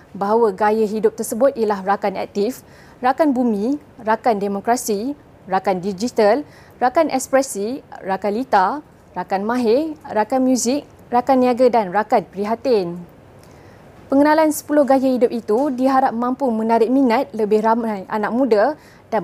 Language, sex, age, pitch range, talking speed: Malay, female, 20-39, 205-265 Hz, 125 wpm